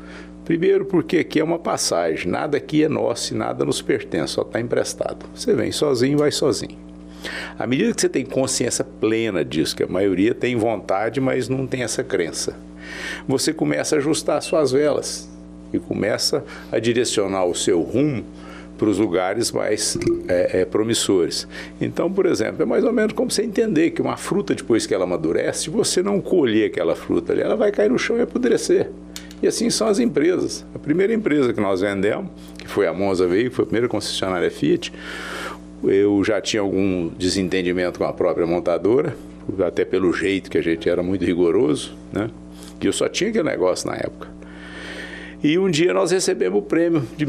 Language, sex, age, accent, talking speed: Portuguese, male, 60-79, Brazilian, 185 wpm